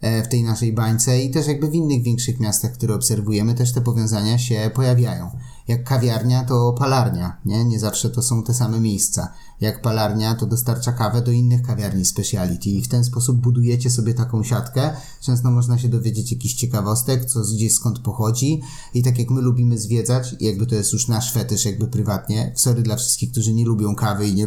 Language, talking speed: Polish, 200 wpm